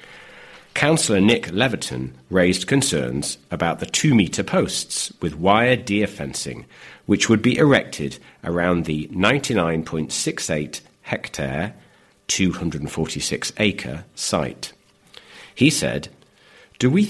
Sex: male